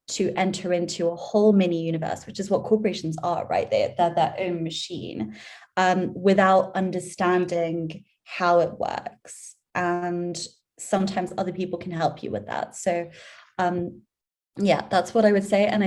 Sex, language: female, English